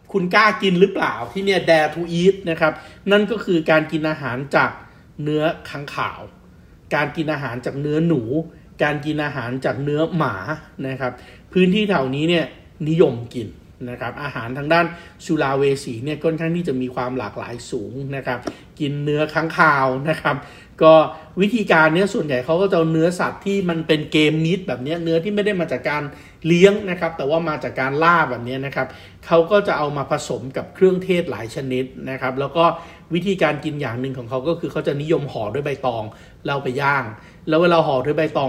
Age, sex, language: 60-79, male, Thai